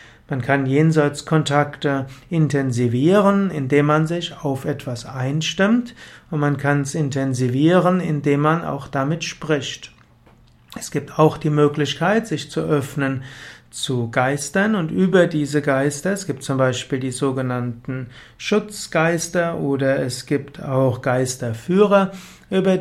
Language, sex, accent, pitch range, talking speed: German, male, German, 135-170 Hz, 125 wpm